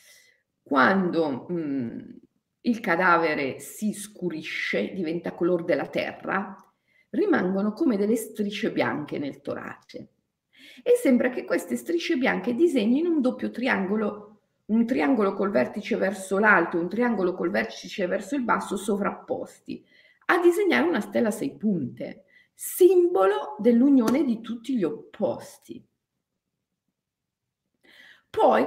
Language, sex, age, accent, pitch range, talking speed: Italian, female, 40-59, native, 190-275 Hz, 115 wpm